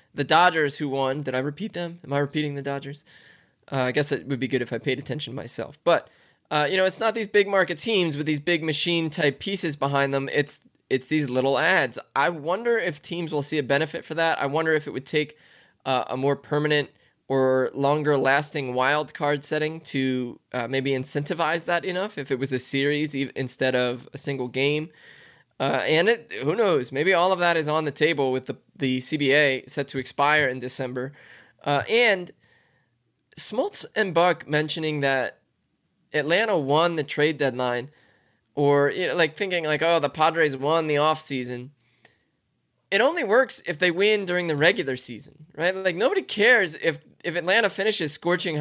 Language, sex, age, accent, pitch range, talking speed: English, male, 20-39, American, 135-165 Hz, 195 wpm